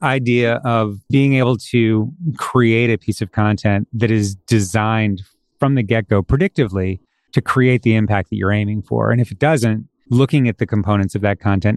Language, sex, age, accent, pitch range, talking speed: English, male, 30-49, American, 105-125 Hz, 185 wpm